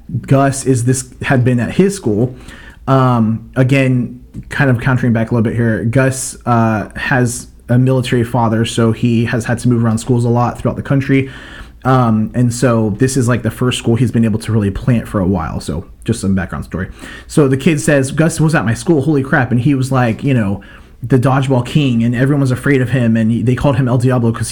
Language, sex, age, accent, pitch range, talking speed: English, male, 30-49, American, 110-130 Hz, 230 wpm